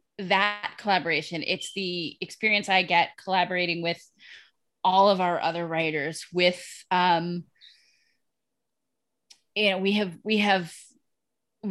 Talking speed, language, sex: 115 wpm, English, female